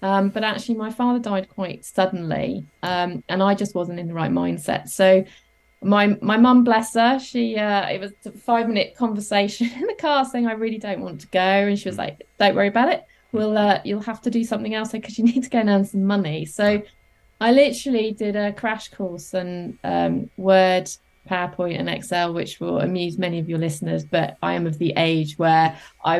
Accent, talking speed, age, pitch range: British, 215 wpm, 20-39, 175-215 Hz